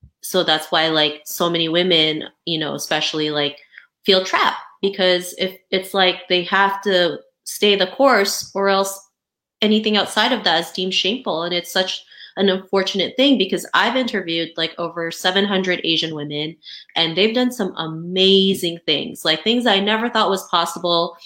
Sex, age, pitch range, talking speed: female, 20-39, 170-205 Hz, 165 wpm